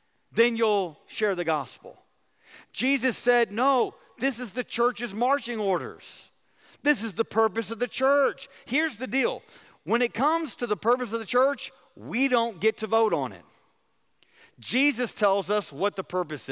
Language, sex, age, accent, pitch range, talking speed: English, male, 50-69, American, 210-255 Hz, 165 wpm